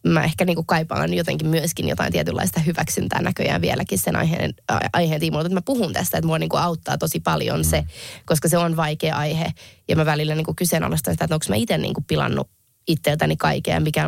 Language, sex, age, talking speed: Finnish, female, 20-39, 190 wpm